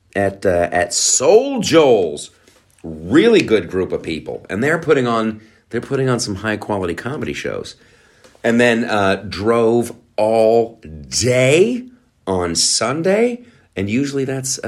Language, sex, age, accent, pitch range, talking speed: English, male, 40-59, American, 95-120 Hz, 135 wpm